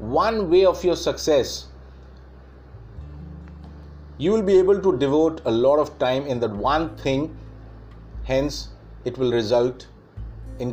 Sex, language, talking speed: male, English, 135 wpm